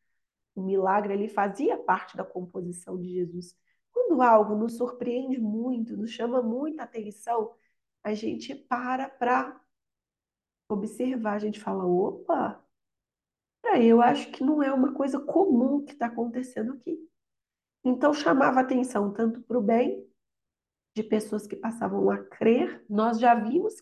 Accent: Brazilian